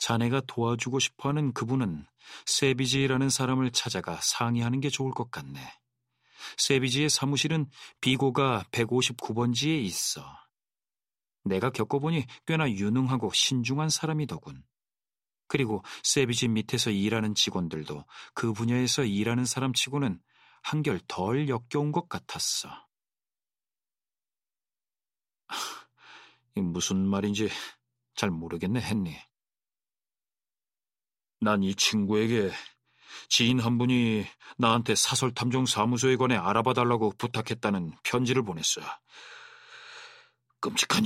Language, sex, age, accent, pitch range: Korean, male, 40-59, native, 115-135 Hz